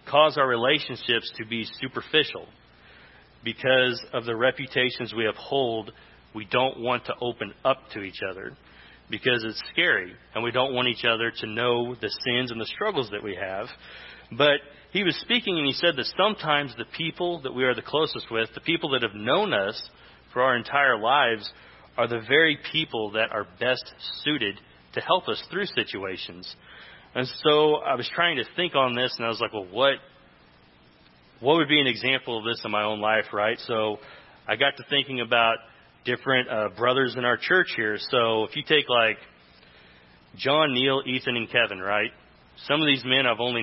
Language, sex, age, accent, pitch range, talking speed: English, male, 40-59, American, 110-135 Hz, 190 wpm